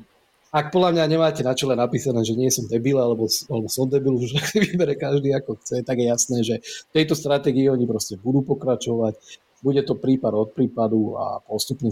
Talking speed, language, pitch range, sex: 185 wpm, Slovak, 110-135 Hz, male